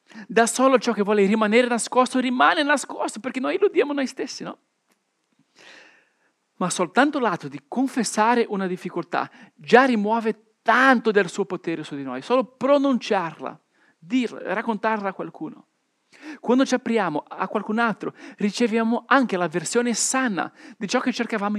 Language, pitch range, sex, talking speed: Italian, 195-260 Hz, male, 145 wpm